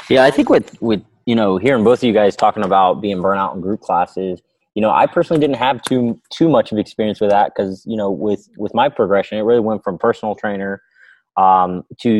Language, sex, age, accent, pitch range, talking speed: English, male, 20-39, American, 95-120 Hz, 230 wpm